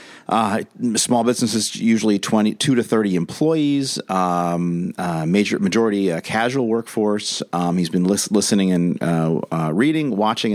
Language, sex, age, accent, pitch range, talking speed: English, male, 40-59, American, 90-115 Hz, 140 wpm